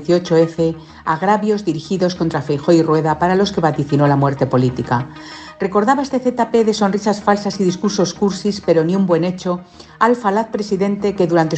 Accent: Spanish